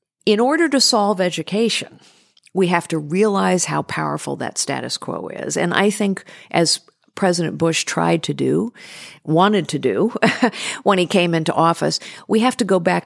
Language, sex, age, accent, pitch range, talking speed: English, female, 50-69, American, 155-200 Hz, 170 wpm